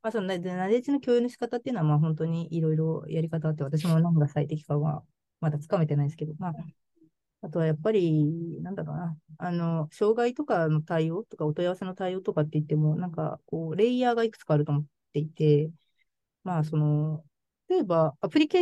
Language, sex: Japanese, female